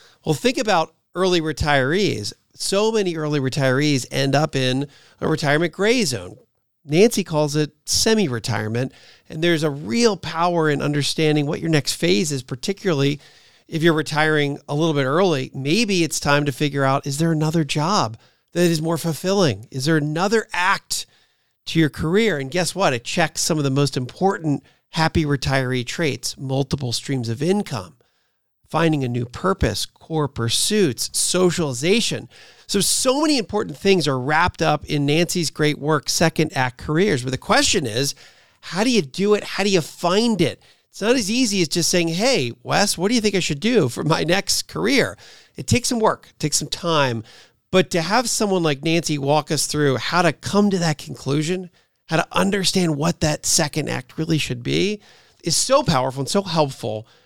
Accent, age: American, 40-59